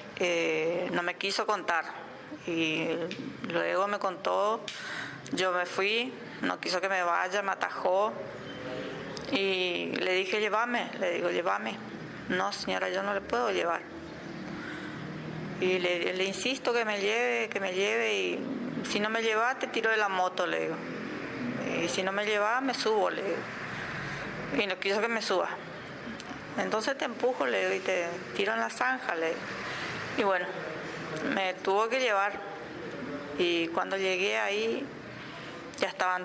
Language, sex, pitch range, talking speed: Spanish, female, 175-220 Hz, 155 wpm